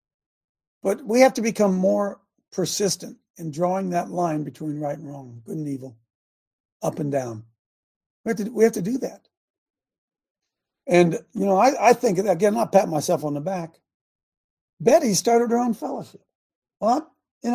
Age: 60-79